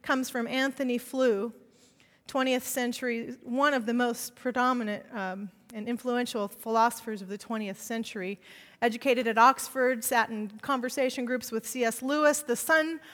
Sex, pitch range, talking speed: female, 225-280 Hz, 140 wpm